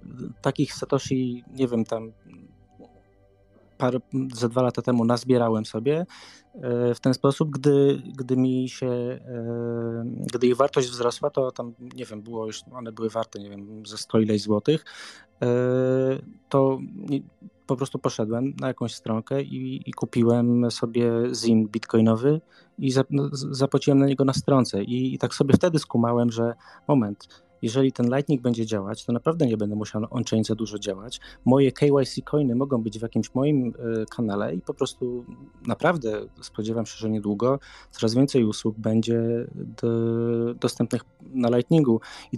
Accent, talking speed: native, 145 wpm